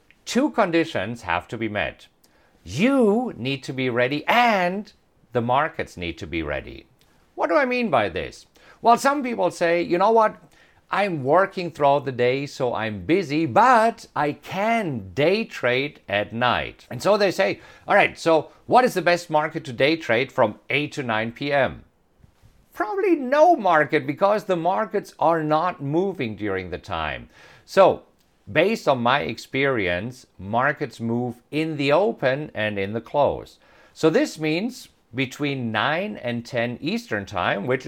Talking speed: 160 wpm